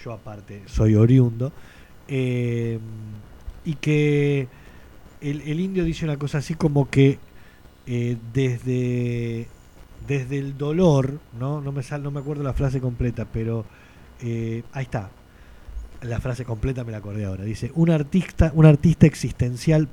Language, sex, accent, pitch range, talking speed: Spanish, male, Argentinian, 115-140 Hz, 145 wpm